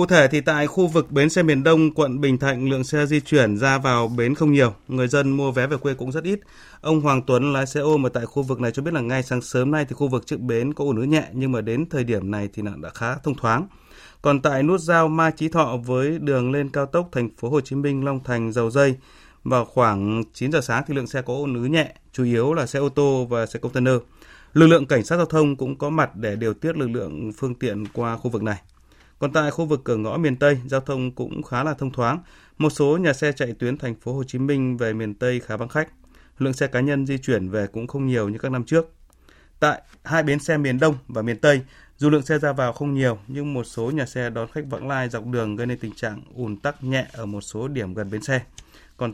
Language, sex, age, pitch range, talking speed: Vietnamese, male, 20-39, 115-145 Hz, 265 wpm